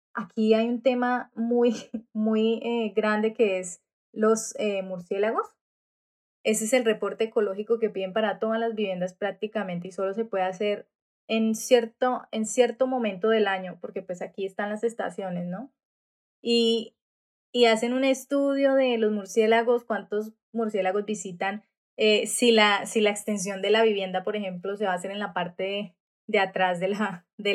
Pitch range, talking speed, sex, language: 190-225 Hz, 170 wpm, female, Spanish